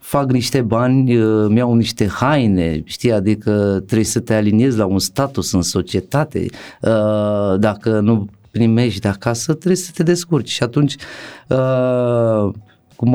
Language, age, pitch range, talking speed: Romanian, 30-49, 100-115 Hz, 135 wpm